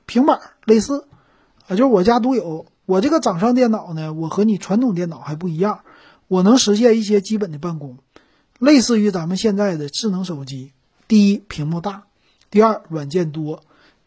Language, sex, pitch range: Chinese, male, 165-220 Hz